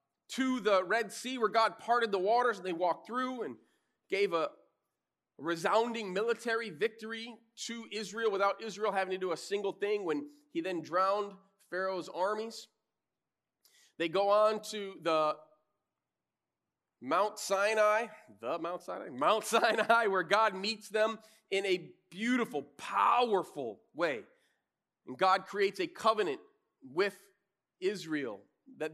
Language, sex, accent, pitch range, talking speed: English, male, American, 190-230 Hz, 135 wpm